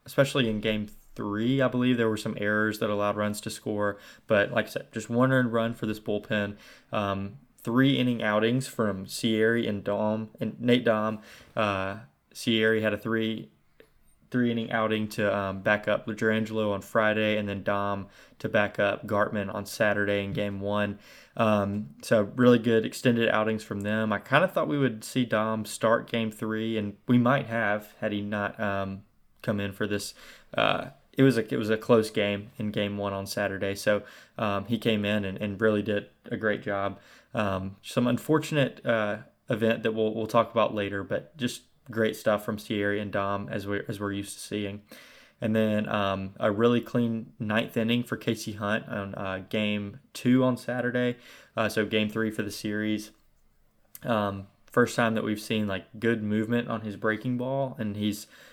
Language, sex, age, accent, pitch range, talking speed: English, male, 20-39, American, 105-115 Hz, 190 wpm